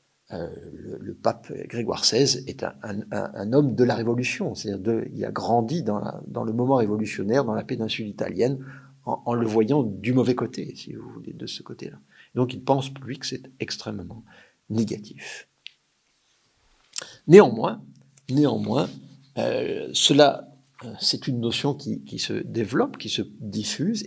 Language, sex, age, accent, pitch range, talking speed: French, male, 50-69, French, 105-135 Hz, 160 wpm